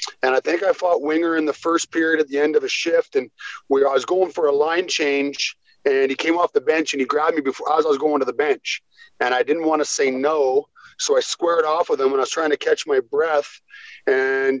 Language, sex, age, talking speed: English, male, 40-59, 265 wpm